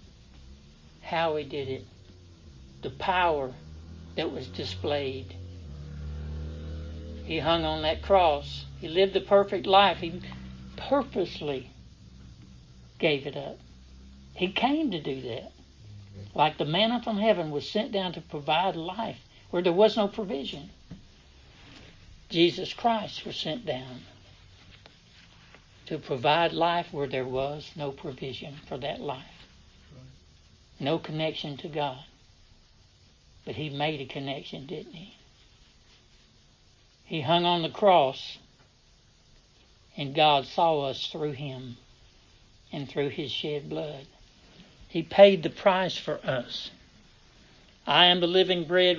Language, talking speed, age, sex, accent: English, 120 wpm, 60-79, male, American